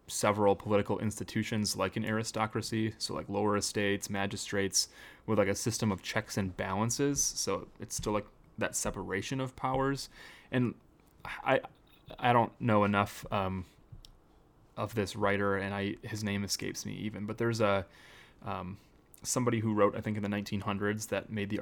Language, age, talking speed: English, 20-39, 165 wpm